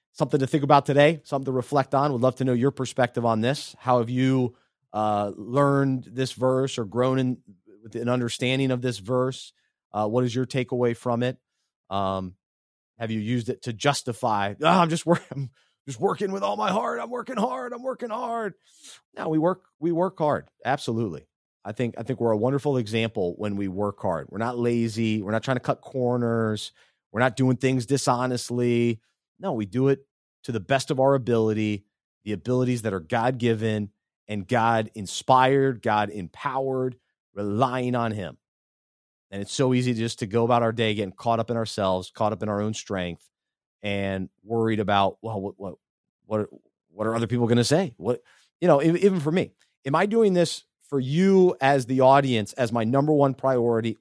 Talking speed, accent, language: 195 wpm, American, English